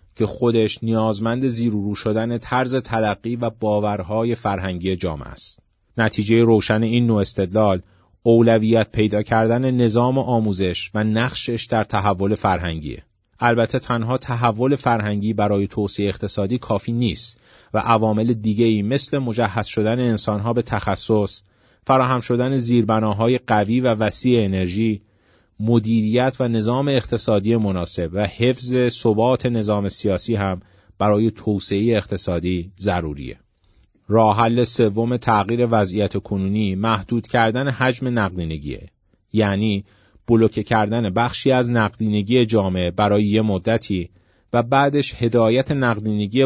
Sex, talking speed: male, 120 wpm